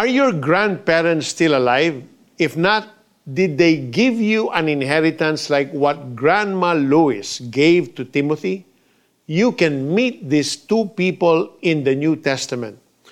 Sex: male